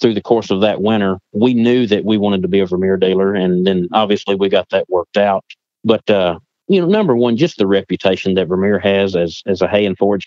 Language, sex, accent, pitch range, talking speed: English, male, American, 100-120 Hz, 245 wpm